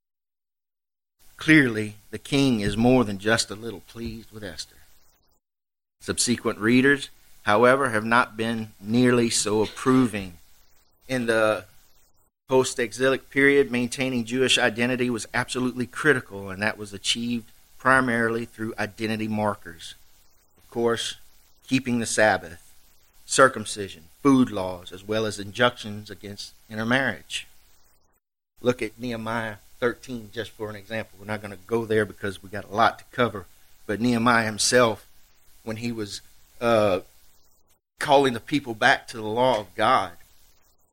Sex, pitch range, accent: male, 85-120 Hz, American